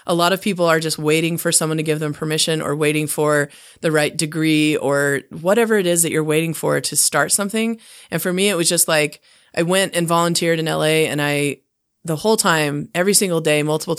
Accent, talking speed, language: American, 225 wpm, English